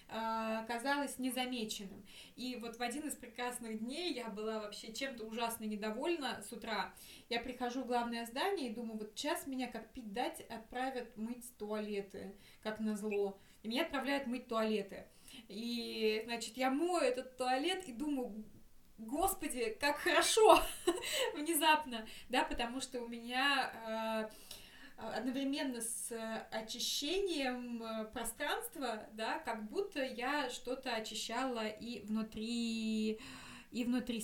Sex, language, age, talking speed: female, Russian, 20-39, 125 wpm